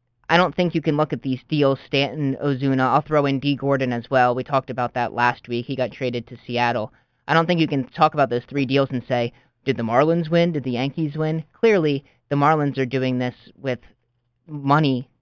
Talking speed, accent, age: 225 wpm, American, 20-39